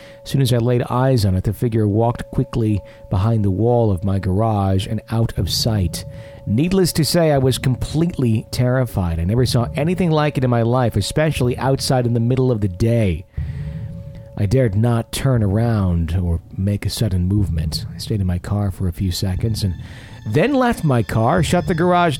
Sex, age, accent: male, 40-59, American